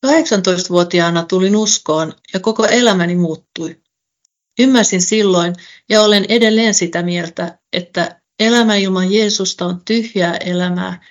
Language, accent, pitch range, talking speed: Finnish, native, 175-210 Hz, 115 wpm